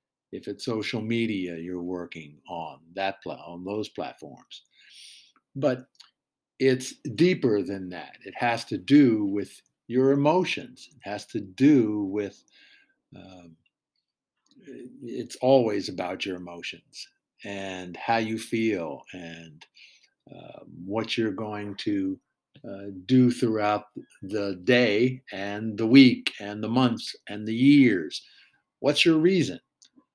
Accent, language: American, English